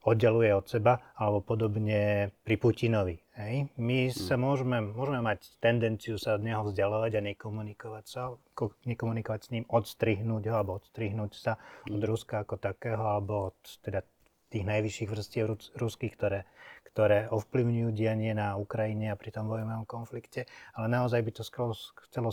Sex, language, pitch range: male, Slovak, 100-115 Hz